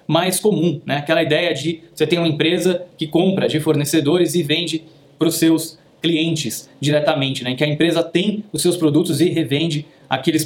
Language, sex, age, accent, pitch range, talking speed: Portuguese, male, 20-39, Brazilian, 155-185 Hz, 185 wpm